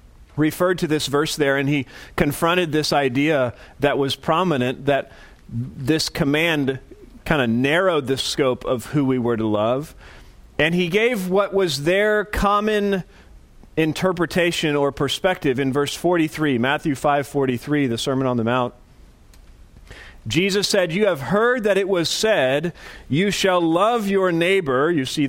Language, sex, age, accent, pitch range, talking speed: English, male, 40-59, American, 140-200 Hz, 150 wpm